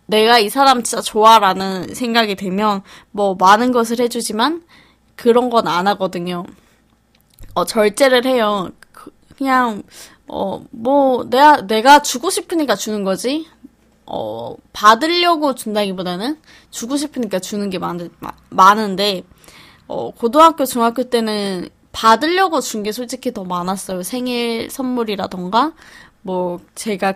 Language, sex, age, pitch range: Korean, female, 20-39, 195-260 Hz